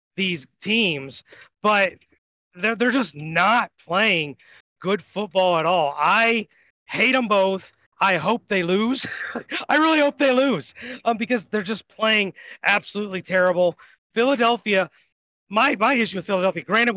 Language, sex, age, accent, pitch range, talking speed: English, male, 30-49, American, 180-230 Hz, 140 wpm